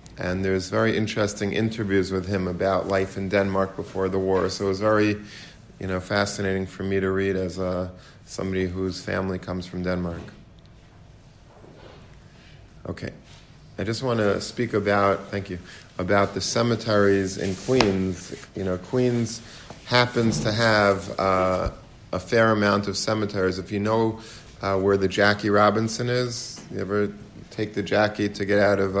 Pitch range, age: 95-110 Hz, 50-69